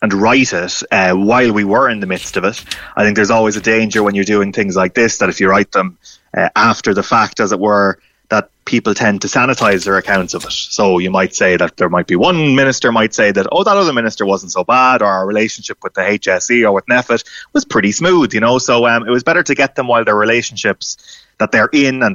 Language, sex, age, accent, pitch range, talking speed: English, male, 20-39, Irish, 100-125 Hz, 255 wpm